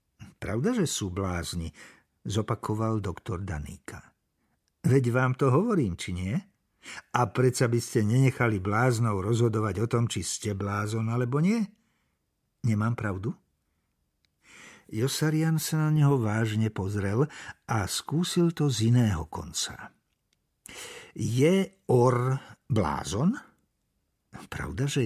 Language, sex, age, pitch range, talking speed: Slovak, male, 60-79, 100-135 Hz, 110 wpm